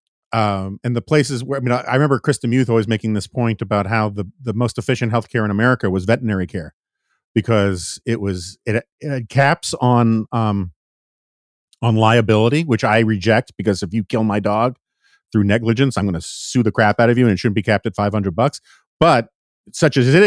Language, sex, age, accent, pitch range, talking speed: English, male, 40-59, American, 110-135 Hz, 205 wpm